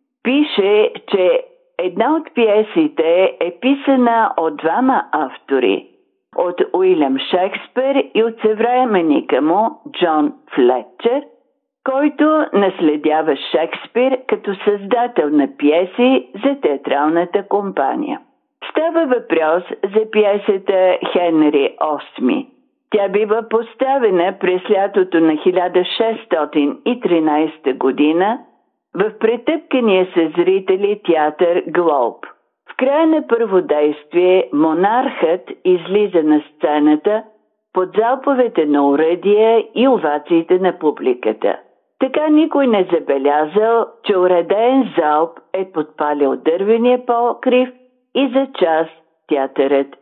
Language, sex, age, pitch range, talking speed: Bulgarian, female, 50-69, 165-260 Hz, 100 wpm